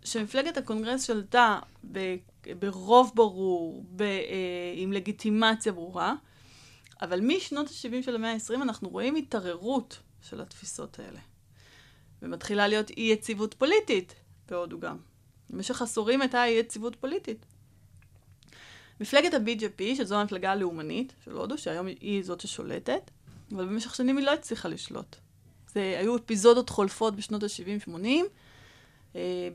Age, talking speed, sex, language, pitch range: 30-49, 120 wpm, female, Hebrew, 190-245 Hz